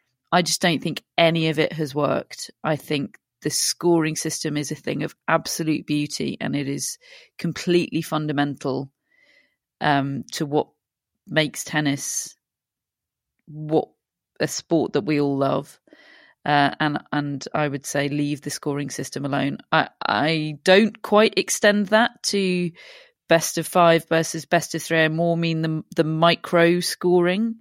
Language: English